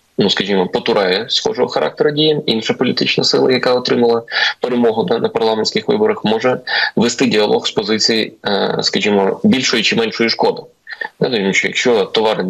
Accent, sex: native, male